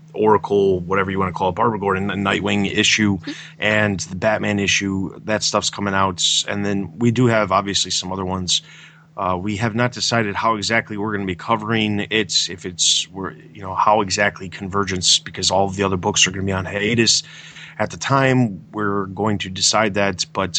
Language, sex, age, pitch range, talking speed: English, male, 20-39, 100-125 Hz, 205 wpm